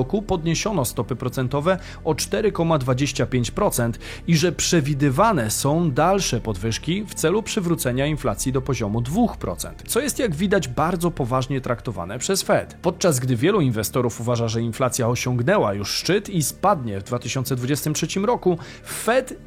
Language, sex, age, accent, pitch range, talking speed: Polish, male, 40-59, native, 125-175 Hz, 135 wpm